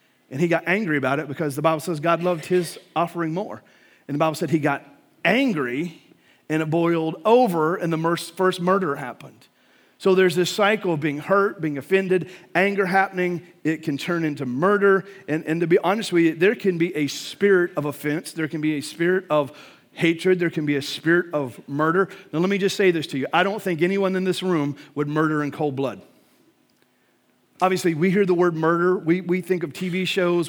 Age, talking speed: 40-59, 210 wpm